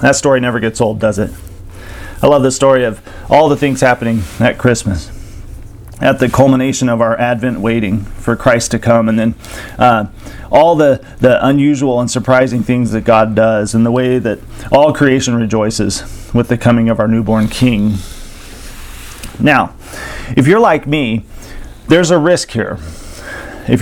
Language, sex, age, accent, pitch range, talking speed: English, male, 40-59, American, 110-155 Hz, 165 wpm